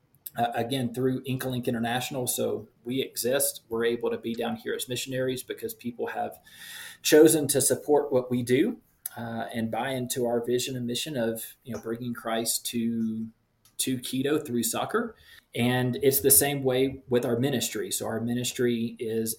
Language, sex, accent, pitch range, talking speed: English, male, American, 115-130 Hz, 170 wpm